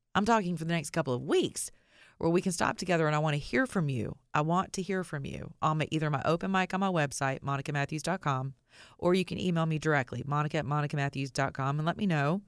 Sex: female